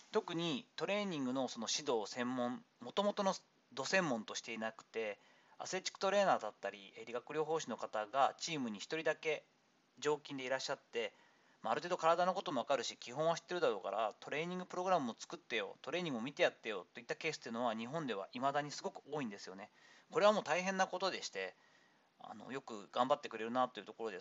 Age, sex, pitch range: 40-59, male, 125-195 Hz